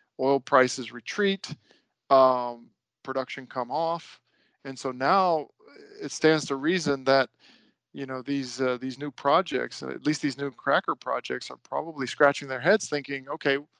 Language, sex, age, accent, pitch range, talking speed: English, male, 40-59, American, 130-145 Hz, 150 wpm